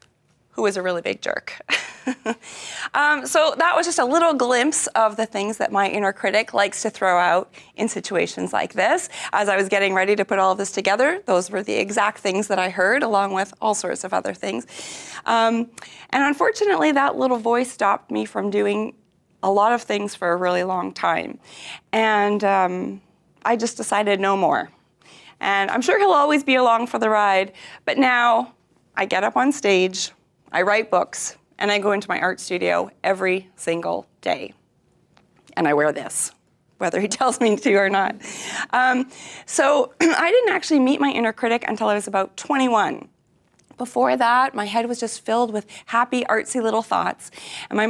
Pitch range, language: 195-250 Hz, English